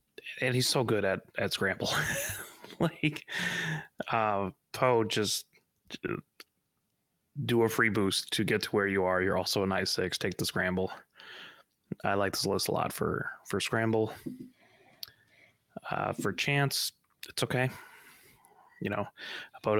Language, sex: English, male